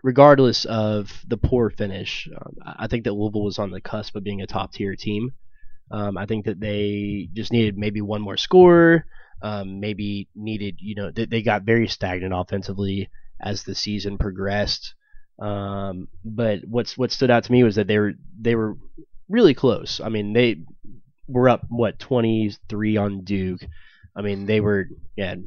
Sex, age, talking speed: male, 20-39, 175 wpm